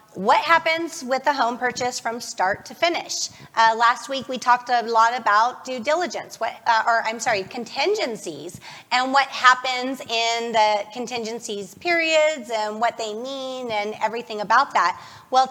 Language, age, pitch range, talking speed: English, 30-49, 215-270 Hz, 165 wpm